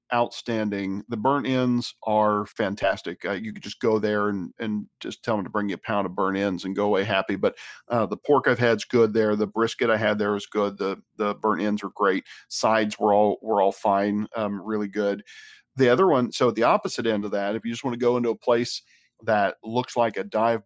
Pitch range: 105-120 Hz